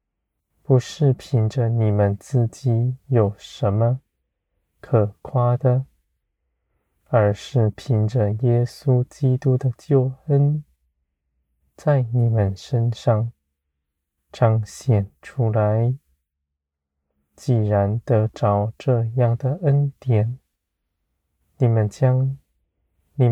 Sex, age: male, 20-39